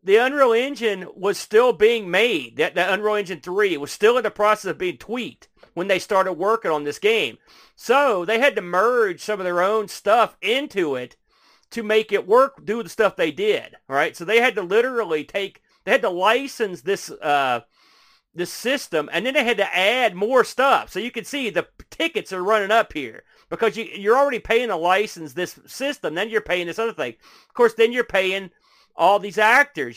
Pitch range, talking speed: 170-230 Hz, 210 wpm